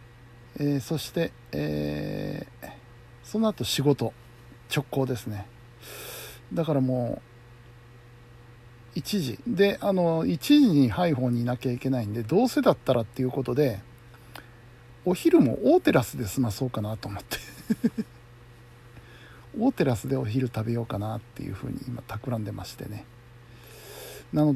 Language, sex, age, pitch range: Japanese, male, 60-79, 120-145 Hz